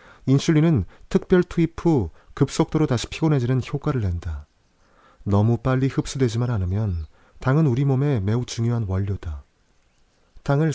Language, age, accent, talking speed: English, 40-59, Korean, 110 wpm